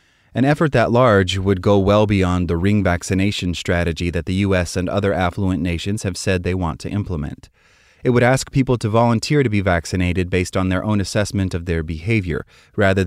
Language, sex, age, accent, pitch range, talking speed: English, male, 30-49, American, 90-110 Hz, 200 wpm